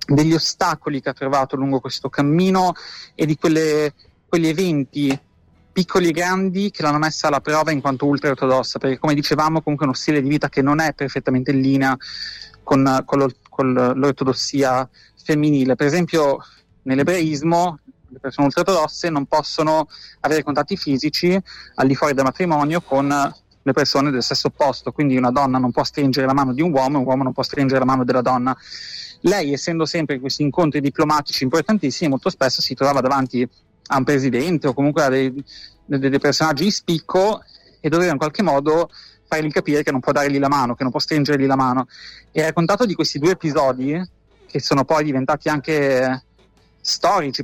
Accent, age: native, 20-39